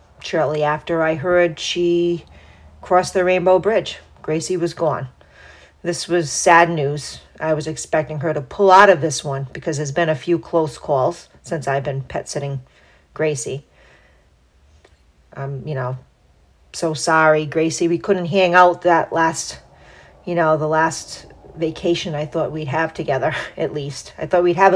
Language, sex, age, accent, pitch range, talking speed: English, female, 40-59, American, 135-175 Hz, 160 wpm